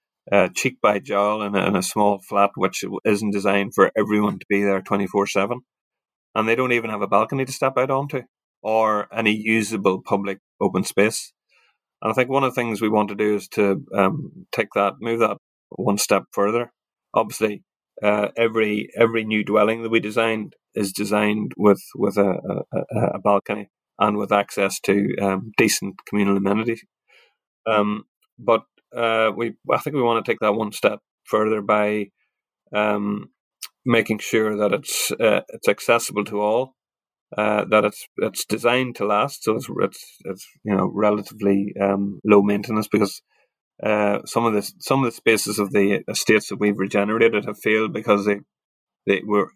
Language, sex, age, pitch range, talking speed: English, male, 30-49, 100-110 Hz, 175 wpm